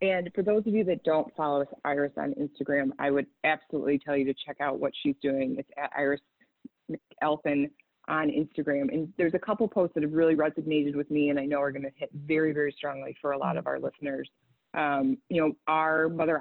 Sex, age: female, 20-39